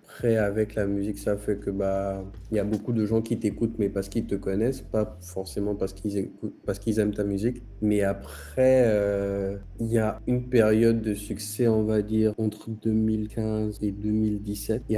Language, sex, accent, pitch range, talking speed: French, male, French, 100-110 Hz, 190 wpm